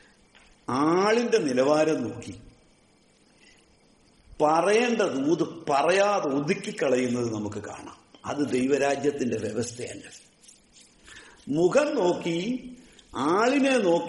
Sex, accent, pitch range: male, Indian, 150-245 Hz